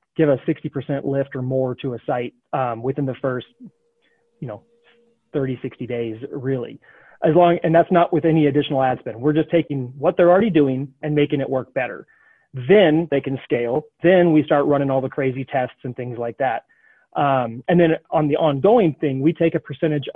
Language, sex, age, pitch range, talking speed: English, male, 30-49, 130-160 Hz, 200 wpm